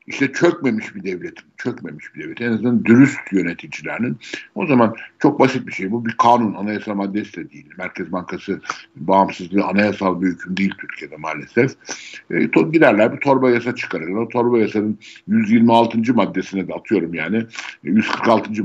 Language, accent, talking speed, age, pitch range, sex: Turkish, native, 160 wpm, 60-79, 95-120 Hz, male